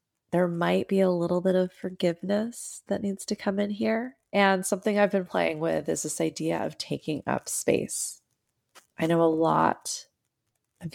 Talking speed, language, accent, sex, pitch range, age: 175 wpm, English, American, female, 150-205 Hz, 20-39